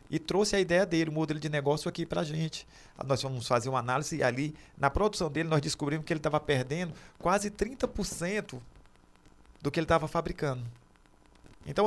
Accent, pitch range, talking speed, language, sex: Brazilian, 125-180 Hz, 185 wpm, Portuguese, male